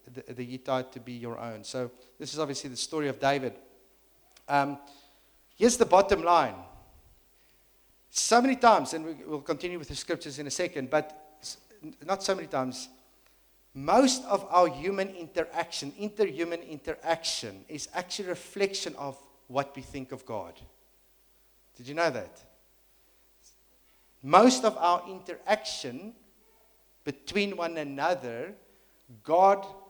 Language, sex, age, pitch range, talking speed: English, male, 50-69, 135-185 Hz, 130 wpm